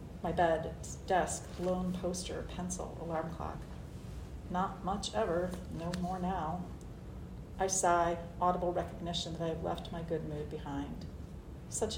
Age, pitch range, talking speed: 40-59, 155-185 Hz, 135 wpm